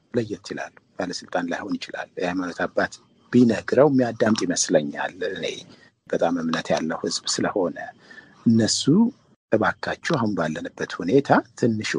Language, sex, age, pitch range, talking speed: Amharic, male, 50-69, 105-125 Hz, 120 wpm